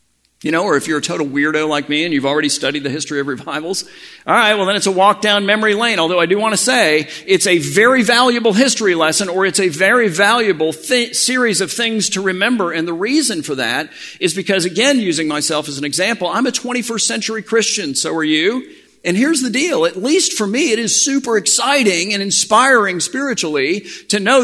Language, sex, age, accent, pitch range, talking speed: English, male, 50-69, American, 150-230 Hz, 215 wpm